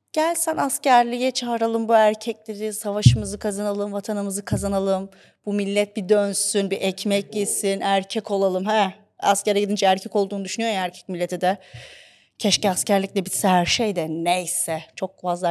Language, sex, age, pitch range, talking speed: Turkish, female, 30-49, 195-275 Hz, 145 wpm